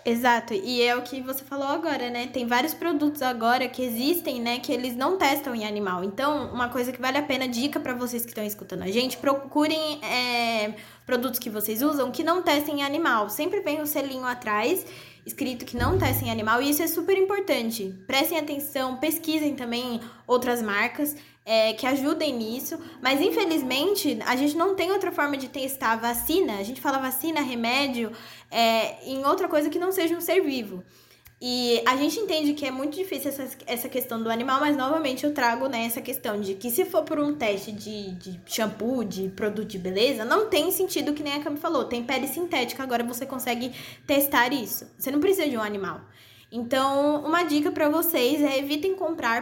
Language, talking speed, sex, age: Portuguese, 200 wpm, female, 20-39